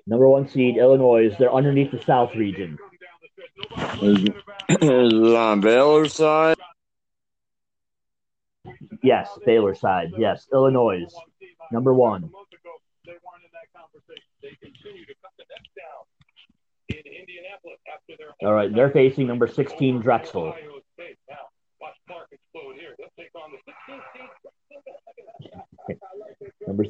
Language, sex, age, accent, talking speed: English, male, 40-59, American, 60 wpm